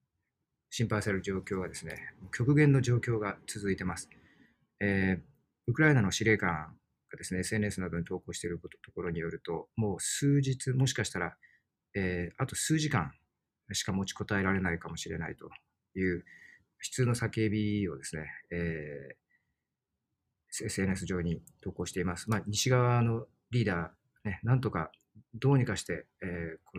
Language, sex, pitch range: Japanese, male, 90-120 Hz